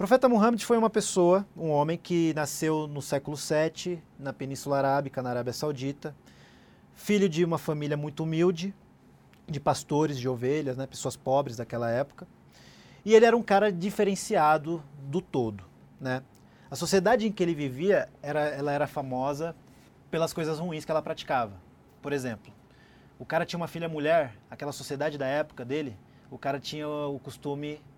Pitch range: 130-170 Hz